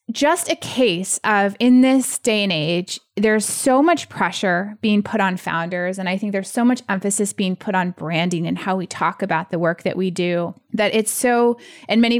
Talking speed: 210 wpm